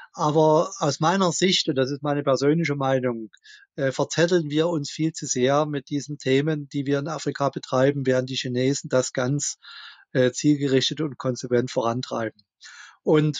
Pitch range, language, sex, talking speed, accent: 135-170 Hz, German, male, 160 wpm, German